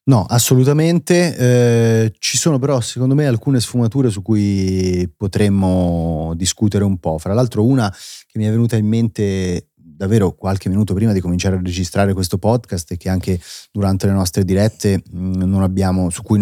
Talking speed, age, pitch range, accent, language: 170 wpm, 30-49, 95-120 Hz, native, Italian